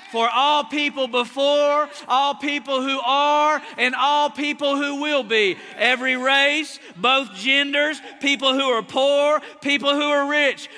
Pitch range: 260-330 Hz